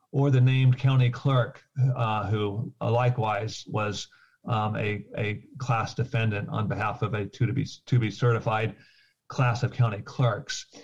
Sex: male